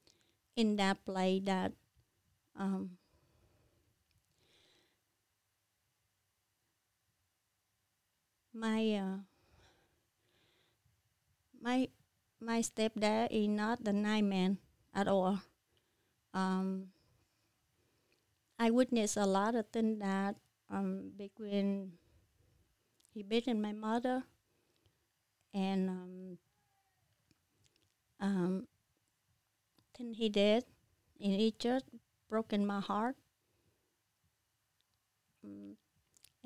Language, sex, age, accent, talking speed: English, female, 30-49, American, 65 wpm